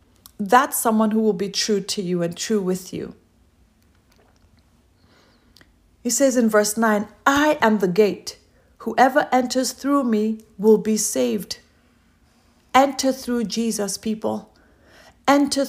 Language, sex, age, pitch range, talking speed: English, female, 40-59, 185-245 Hz, 125 wpm